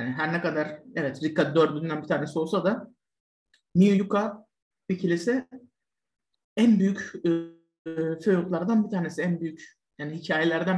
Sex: male